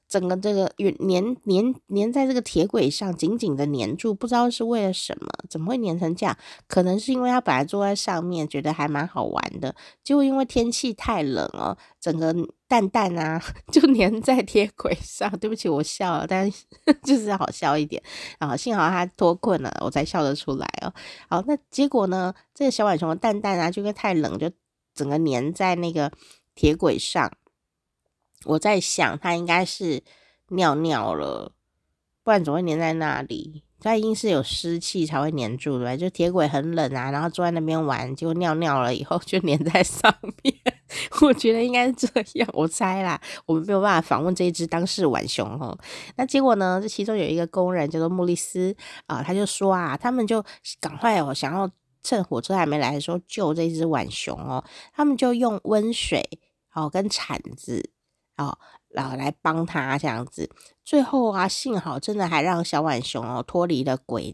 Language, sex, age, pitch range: Chinese, female, 20-39, 155-215 Hz